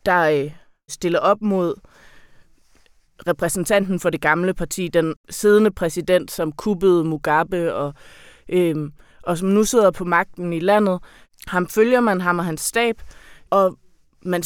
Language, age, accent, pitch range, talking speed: Danish, 20-39, native, 160-190 Hz, 140 wpm